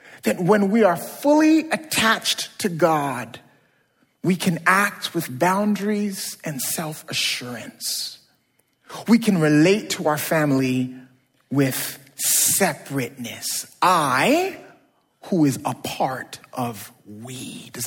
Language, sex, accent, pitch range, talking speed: English, male, American, 145-210 Hz, 105 wpm